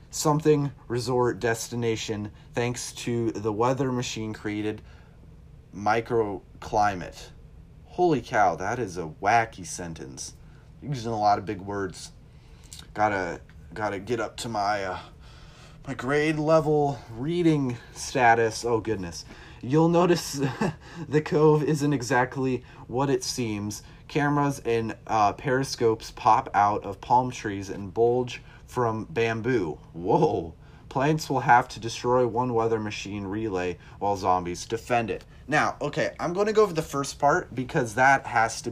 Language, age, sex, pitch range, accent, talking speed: English, 30-49, male, 105-140 Hz, American, 140 wpm